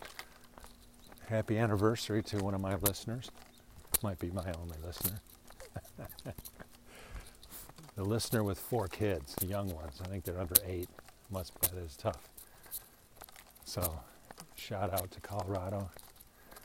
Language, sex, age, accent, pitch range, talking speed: English, male, 50-69, American, 90-105 Hz, 125 wpm